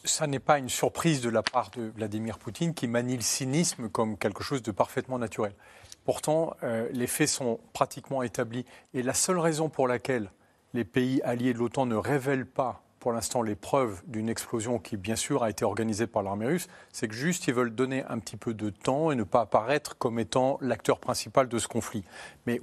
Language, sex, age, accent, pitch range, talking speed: French, male, 40-59, French, 115-150 Hz, 210 wpm